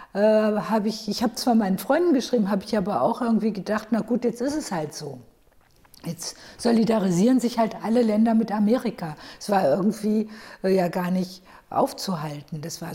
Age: 50-69